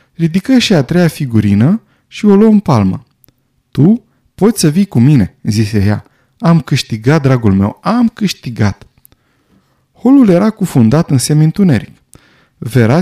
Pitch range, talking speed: 125-170 Hz, 145 wpm